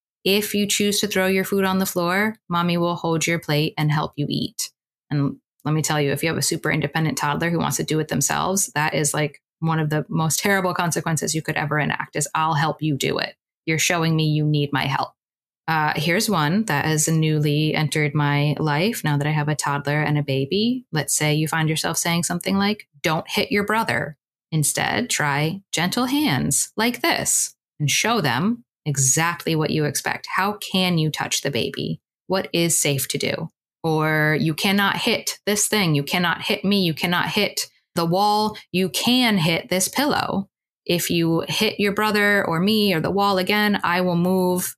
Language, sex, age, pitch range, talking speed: English, female, 20-39, 155-195 Hz, 200 wpm